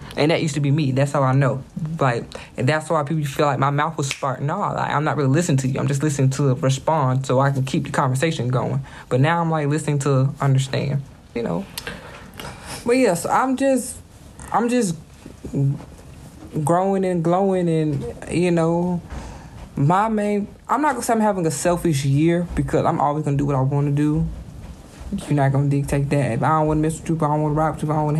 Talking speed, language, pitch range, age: 230 wpm, English, 145-185 Hz, 20-39